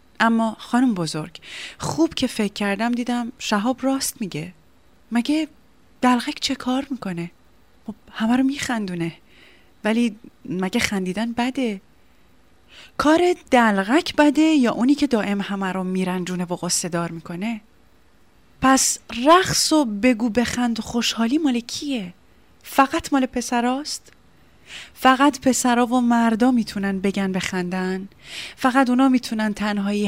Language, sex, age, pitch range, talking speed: Persian, female, 30-49, 190-255 Hz, 120 wpm